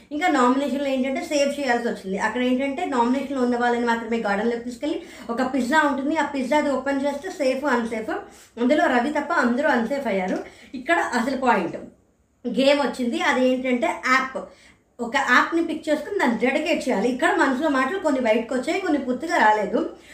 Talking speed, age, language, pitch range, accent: 160 wpm, 20-39, Telugu, 245-295 Hz, native